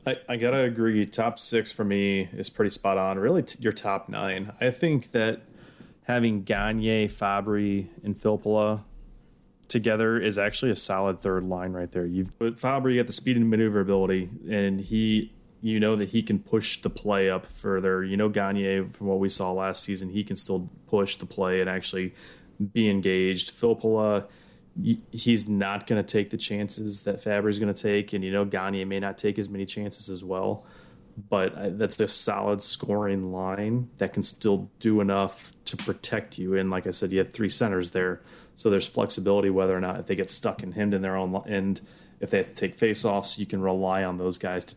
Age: 20-39